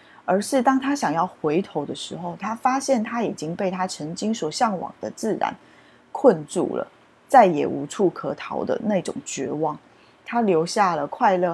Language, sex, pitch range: Chinese, female, 175-225 Hz